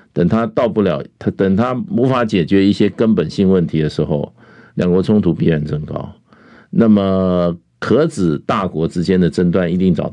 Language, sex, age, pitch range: Chinese, male, 50-69, 90-110 Hz